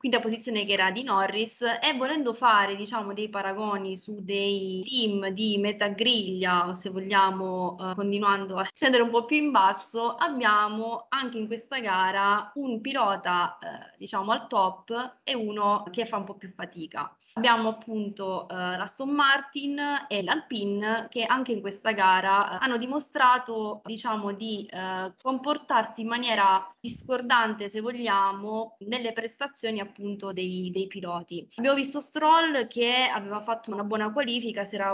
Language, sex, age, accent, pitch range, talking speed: Italian, female, 20-39, native, 195-240 Hz, 155 wpm